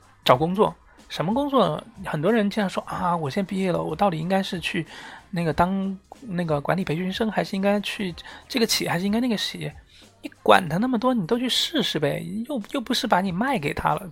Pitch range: 150-205 Hz